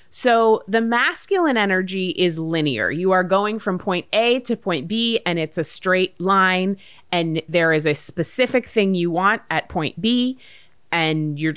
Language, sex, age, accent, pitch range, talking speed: English, female, 30-49, American, 160-210 Hz, 170 wpm